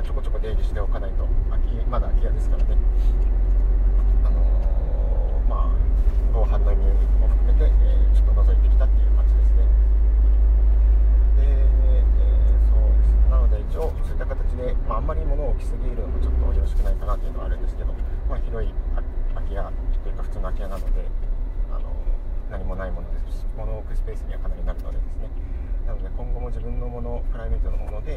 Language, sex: Japanese, male